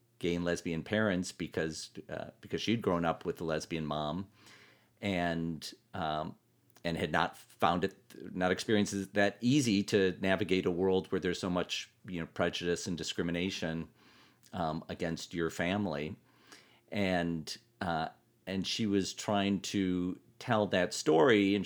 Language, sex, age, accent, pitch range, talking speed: English, male, 40-59, American, 90-105 Hz, 150 wpm